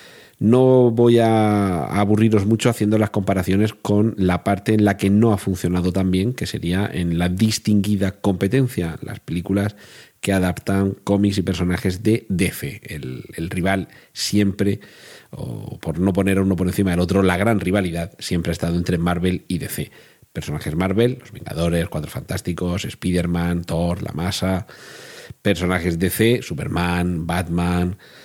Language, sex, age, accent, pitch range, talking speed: Spanish, male, 40-59, Spanish, 90-115 Hz, 155 wpm